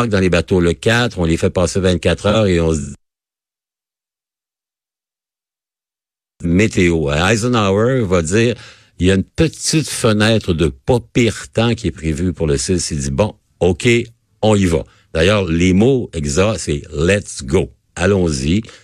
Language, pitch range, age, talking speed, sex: French, 85-120 Hz, 60-79, 160 wpm, male